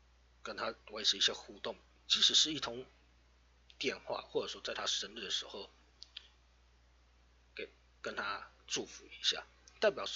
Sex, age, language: male, 30-49, Chinese